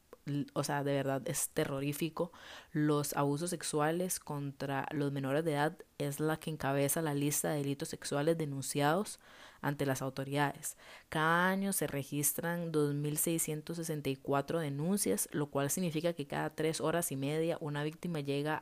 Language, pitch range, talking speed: Spanish, 140-170 Hz, 145 wpm